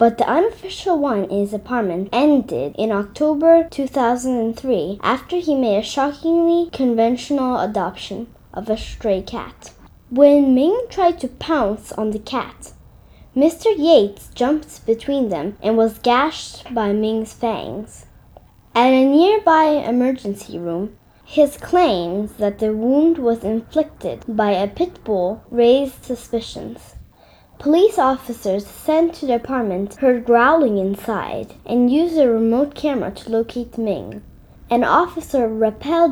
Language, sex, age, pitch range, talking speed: English, female, 10-29, 220-300 Hz, 130 wpm